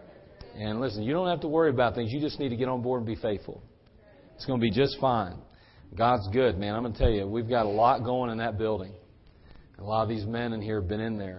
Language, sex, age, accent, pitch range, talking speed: English, male, 40-59, American, 110-125 Hz, 275 wpm